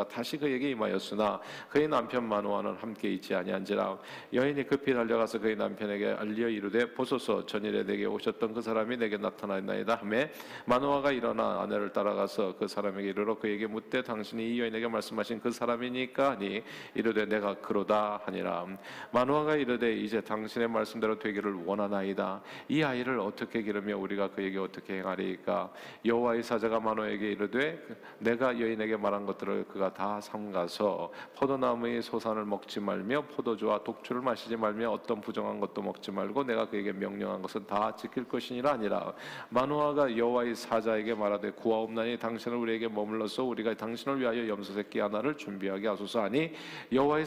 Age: 40-59